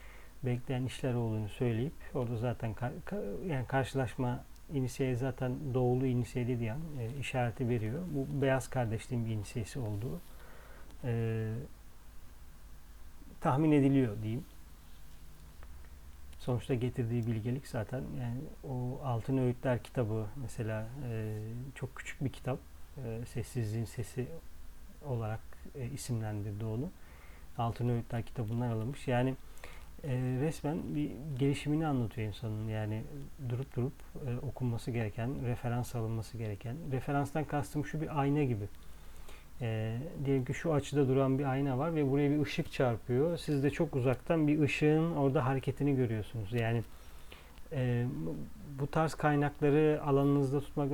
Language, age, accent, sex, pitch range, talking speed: Turkish, 40-59, native, male, 110-140 Hz, 120 wpm